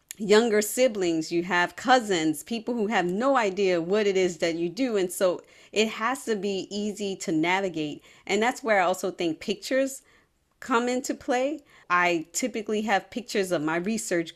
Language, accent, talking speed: English, American, 175 wpm